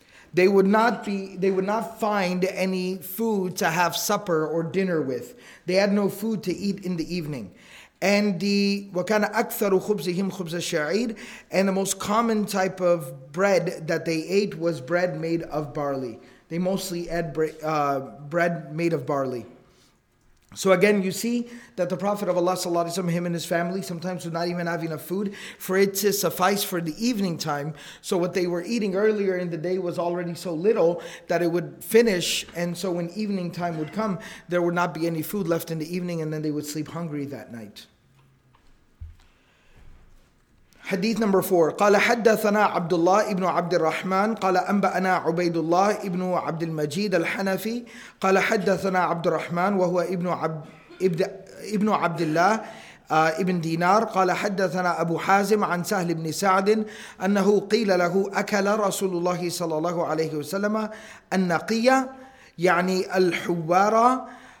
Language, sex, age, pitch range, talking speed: English, male, 30-49, 170-200 Hz, 160 wpm